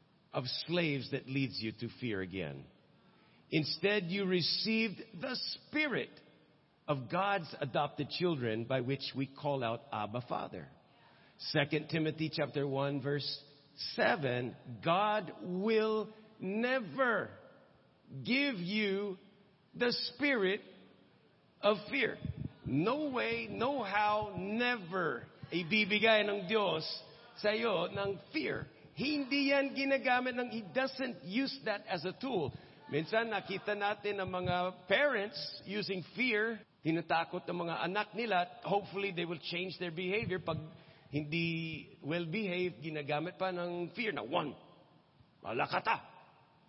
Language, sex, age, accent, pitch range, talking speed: English, male, 50-69, American, 150-210 Hz, 120 wpm